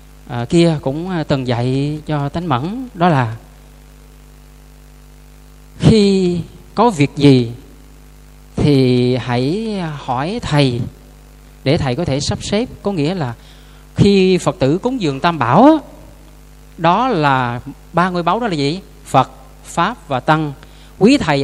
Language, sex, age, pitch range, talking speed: Vietnamese, male, 20-39, 135-180 Hz, 135 wpm